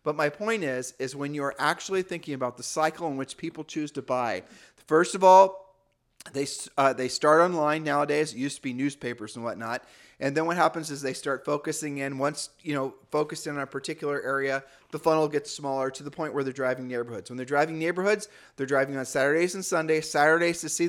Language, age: English, 30-49